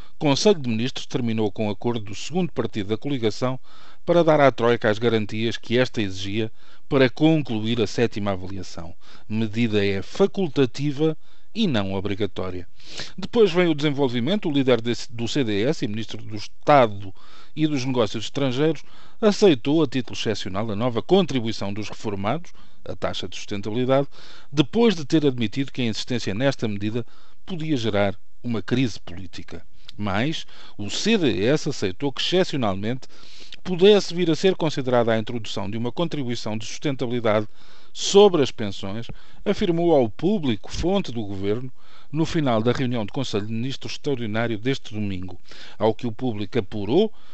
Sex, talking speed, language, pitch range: male, 150 wpm, Portuguese, 110-150 Hz